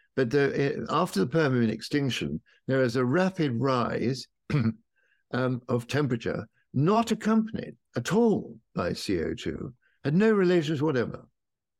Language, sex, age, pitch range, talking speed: English, male, 60-79, 115-170 Hz, 120 wpm